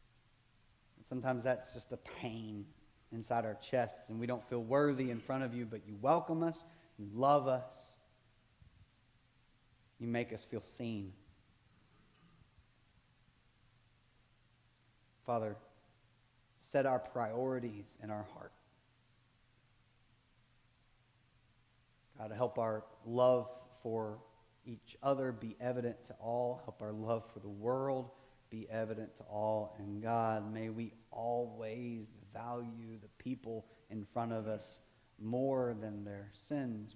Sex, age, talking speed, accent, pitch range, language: male, 30-49, 120 wpm, American, 110-125 Hz, English